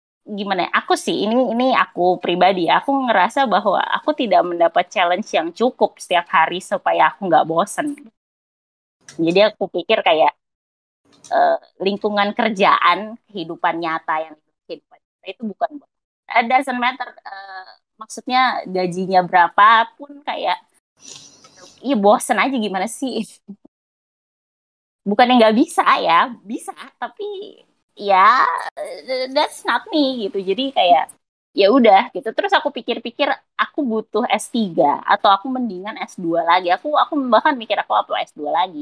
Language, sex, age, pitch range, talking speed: Indonesian, female, 20-39, 180-250 Hz, 130 wpm